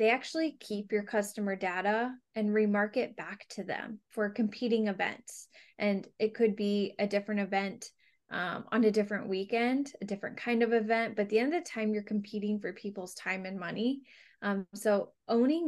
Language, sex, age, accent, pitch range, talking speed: English, female, 20-39, American, 200-235 Hz, 185 wpm